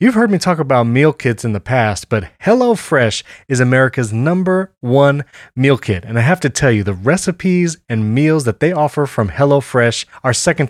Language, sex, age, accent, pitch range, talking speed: English, male, 30-49, American, 115-150 Hz, 195 wpm